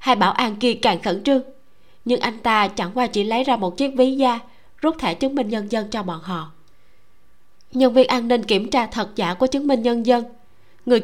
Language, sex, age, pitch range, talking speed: Vietnamese, female, 20-39, 180-250 Hz, 230 wpm